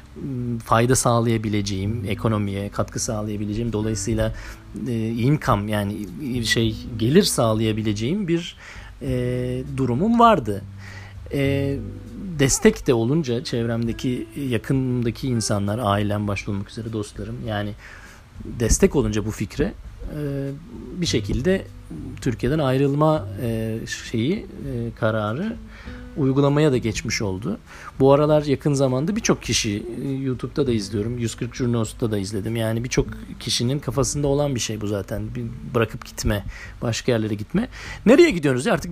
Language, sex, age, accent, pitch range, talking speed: Turkish, male, 40-59, native, 110-135 Hz, 120 wpm